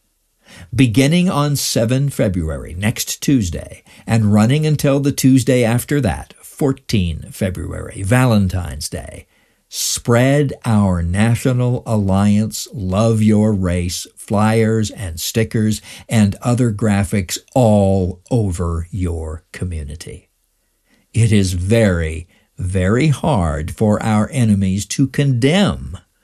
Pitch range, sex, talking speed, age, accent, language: 90-125 Hz, male, 100 wpm, 60-79, American, English